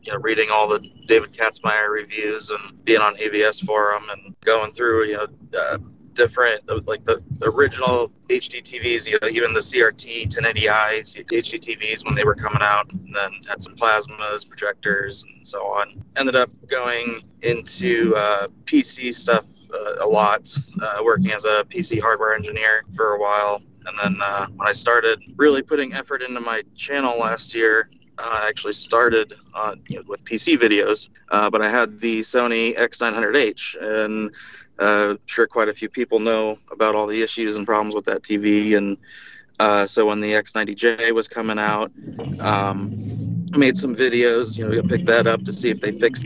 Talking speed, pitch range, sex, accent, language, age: 185 wpm, 105-120 Hz, male, American, English, 30-49